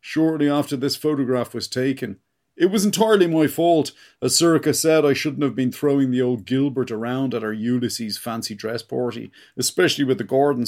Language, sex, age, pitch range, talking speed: English, male, 40-59, 120-155 Hz, 185 wpm